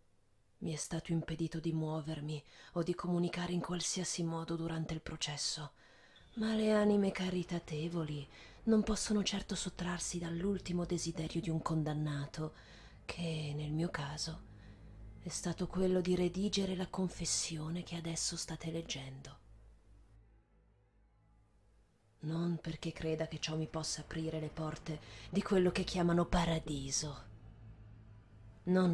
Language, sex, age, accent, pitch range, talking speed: Italian, female, 30-49, native, 140-175 Hz, 120 wpm